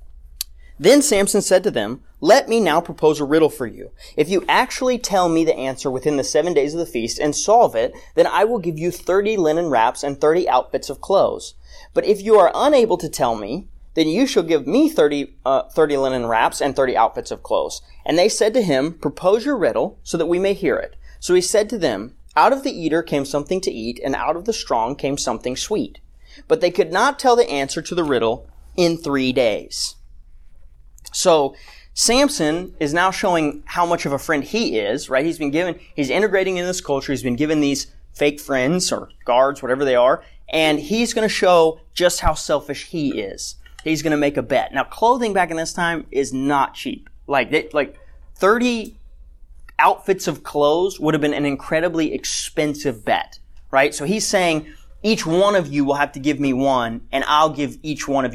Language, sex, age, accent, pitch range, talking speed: English, male, 30-49, American, 140-190 Hz, 210 wpm